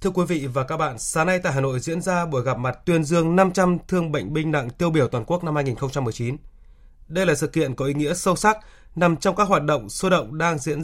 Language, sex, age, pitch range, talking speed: Vietnamese, male, 20-39, 135-175 Hz, 260 wpm